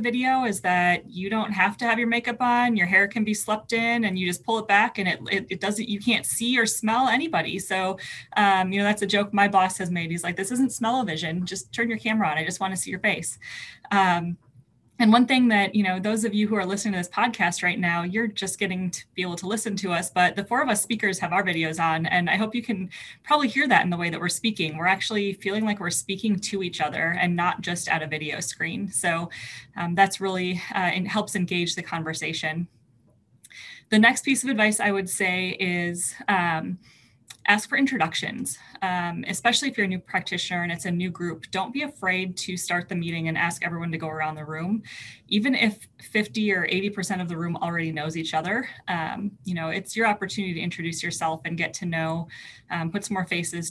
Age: 20-39